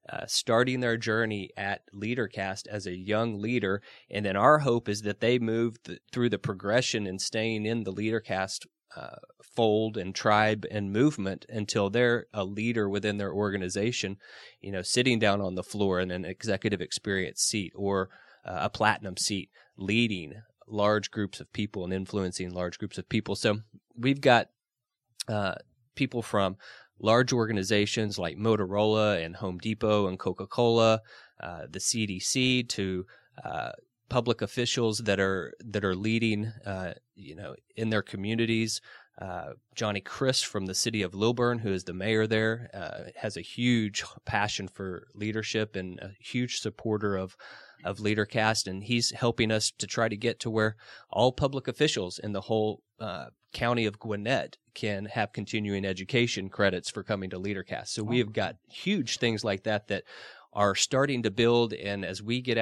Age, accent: 30-49, American